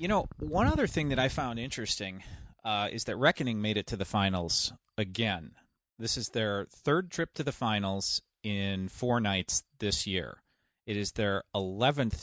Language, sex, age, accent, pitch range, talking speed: English, male, 30-49, American, 95-125 Hz, 175 wpm